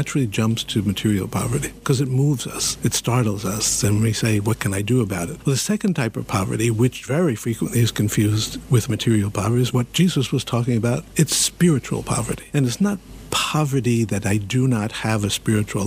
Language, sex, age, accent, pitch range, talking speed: English, male, 60-79, American, 115-140 Hz, 200 wpm